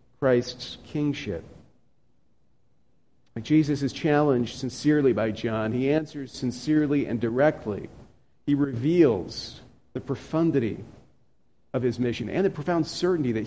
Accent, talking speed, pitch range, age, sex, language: American, 110 wpm, 125-160 Hz, 40-59, male, English